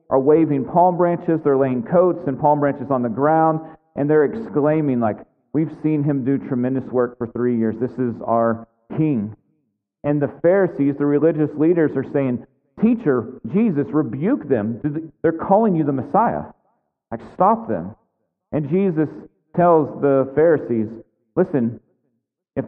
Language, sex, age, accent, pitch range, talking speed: English, male, 40-59, American, 140-170 Hz, 150 wpm